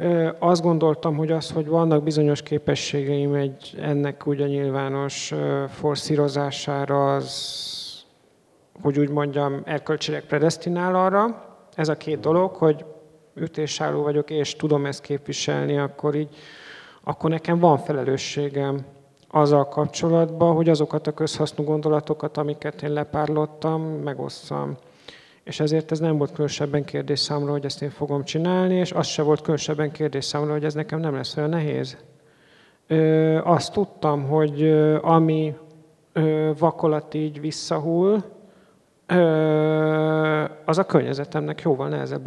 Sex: male